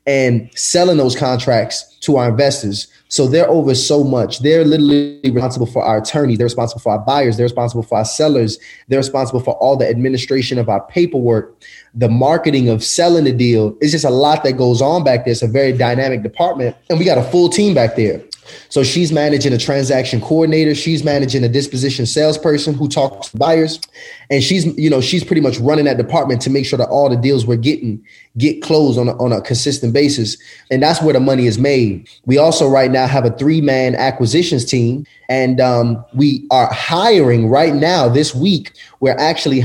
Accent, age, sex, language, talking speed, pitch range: American, 20-39, male, English, 200 wpm, 125-150 Hz